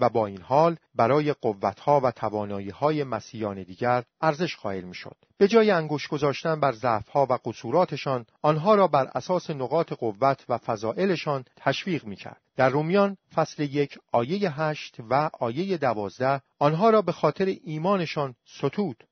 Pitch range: 125-175 Hz